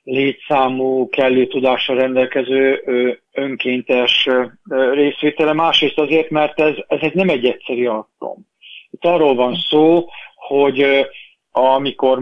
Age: 50-69